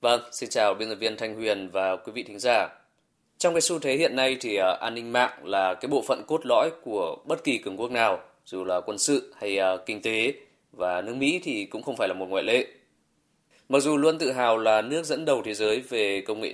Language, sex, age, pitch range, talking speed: Vietnamese, male, 20-39, 105-160 Hz, 245 wpm